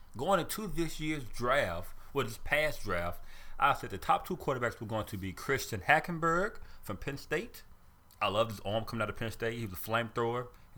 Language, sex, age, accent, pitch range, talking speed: English, male, 30-49, American, 95-120 Hz, 210 wpm